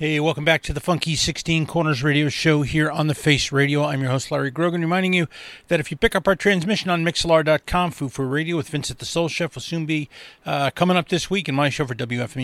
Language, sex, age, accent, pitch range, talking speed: English, male, 30-49, American, 135-165 Hz, 245 wpm